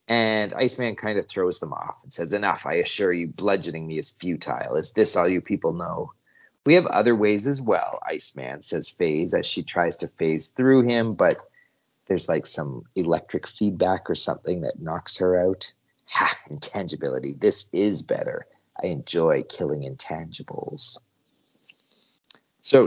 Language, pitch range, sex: English, 100-145 Hz, male